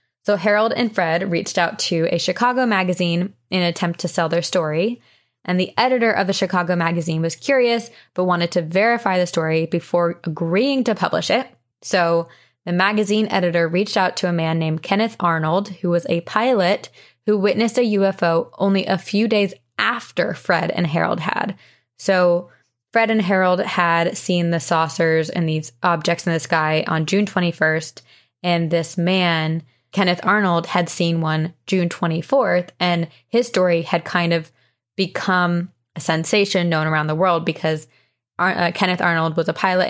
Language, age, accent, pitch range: English, 20-39, American, 165-195 Hz